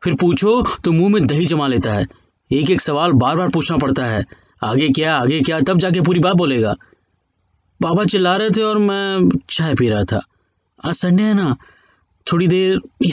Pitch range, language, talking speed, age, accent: 135-225 Hz, Hindi, 195 wpm, 20-39, native